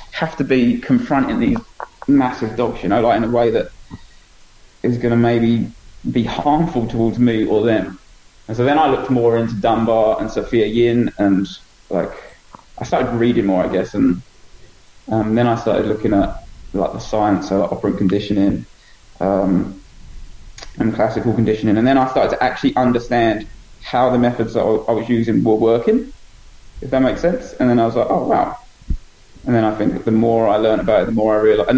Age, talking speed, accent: 20-39, 190 wpm, British